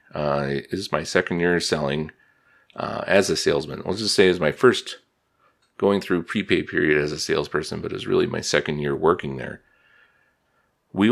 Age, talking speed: 30-49, 180 wpm